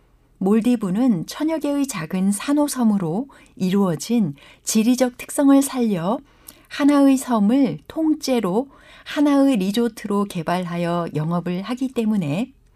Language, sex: Korean, female